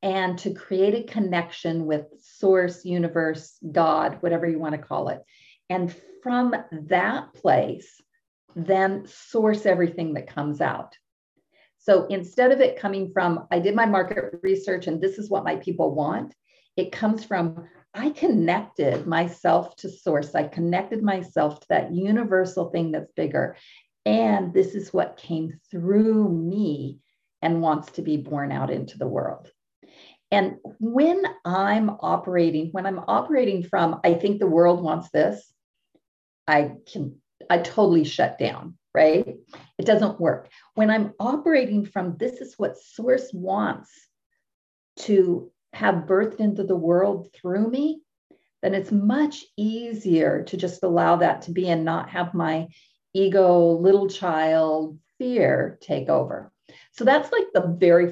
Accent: American